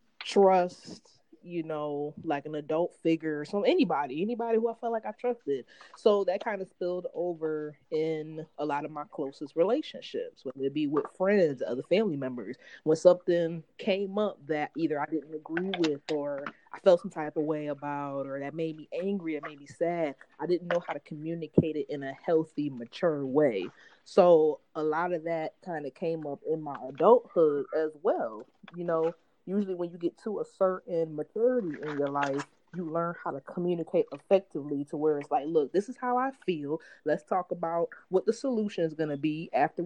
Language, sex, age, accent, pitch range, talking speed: English, female, 20-39, American, 150-195 Hz, 195 wpm